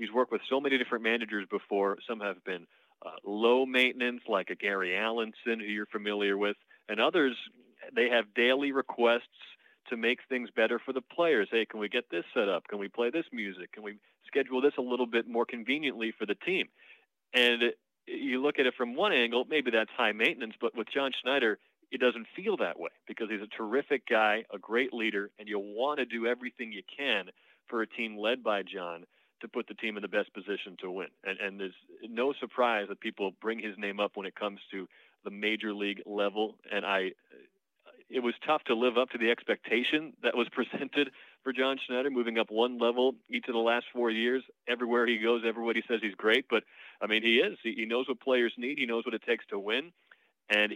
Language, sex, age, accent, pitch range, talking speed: English, male, 40-59, American, 105-125 Hz, 215 wpm